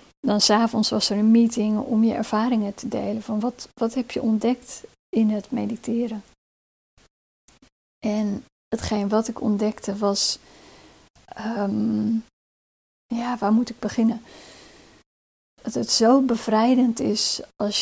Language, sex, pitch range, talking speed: Dutch, female, 215-240 Hz, 130 wpm